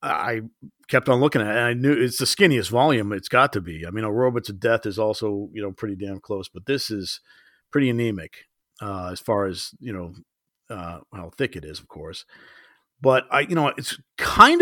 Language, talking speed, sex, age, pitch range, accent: English, 220 wpm, male, 50-69, 110-140 Hz, American